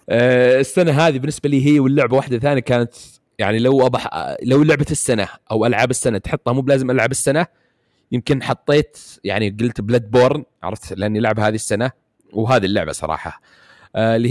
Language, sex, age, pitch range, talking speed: Arabic, male, 30-49, 105-135 Hz, 155 wpm